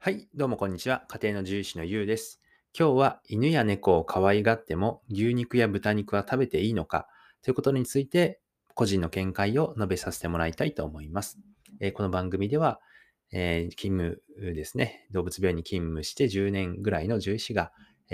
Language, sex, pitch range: Japanese, male, 90-115 Hz